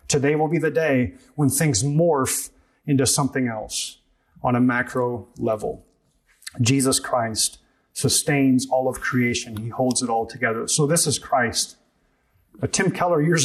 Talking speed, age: 150 wpm, 30-49